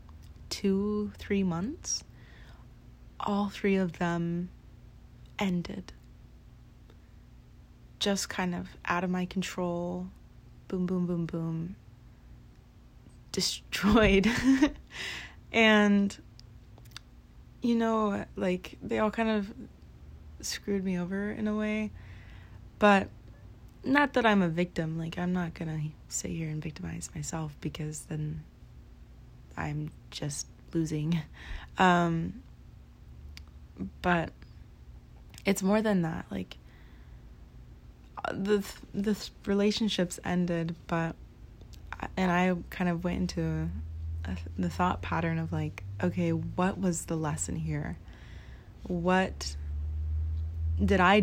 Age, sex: 20-39, female